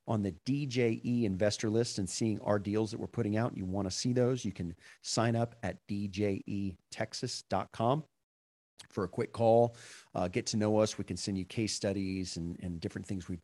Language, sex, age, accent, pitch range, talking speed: English, male, 40-59, American, 90-115 Hz, 200 wpm